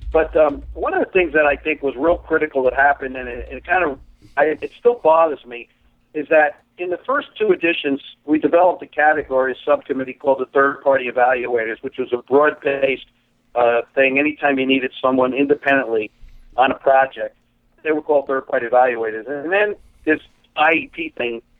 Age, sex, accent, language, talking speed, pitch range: 50-69, male, American, English, 185 wpm, 130-155 Hz